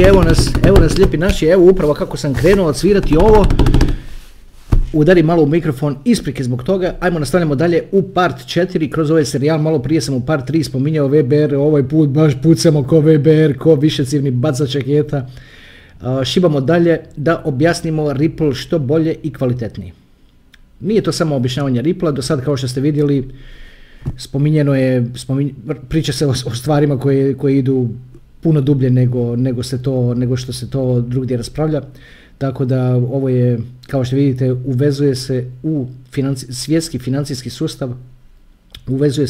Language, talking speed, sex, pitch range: Croatian, 165 wpm, male, 125-155 Hz